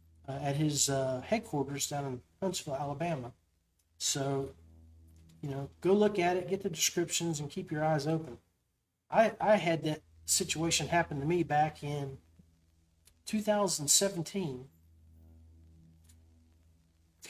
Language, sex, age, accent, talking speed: English, male, 40-59, American, 120 wpm